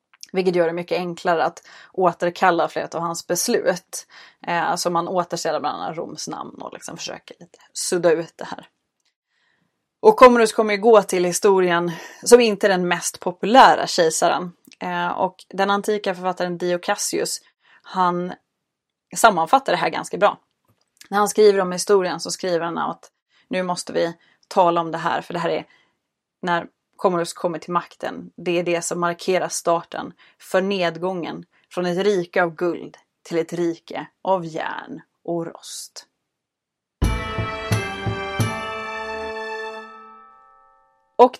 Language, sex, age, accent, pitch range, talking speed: Swedish, female, 20-39, native, 170-220 Hz, 145 wpm